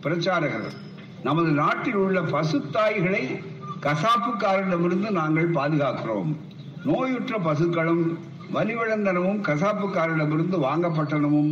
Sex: male